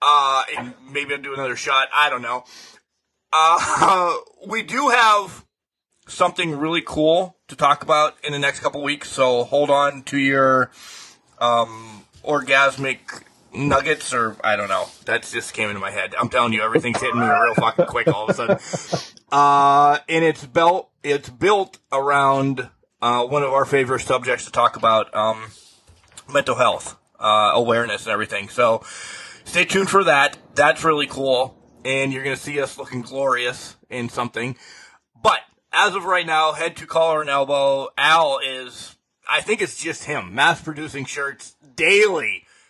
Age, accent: 30-49, American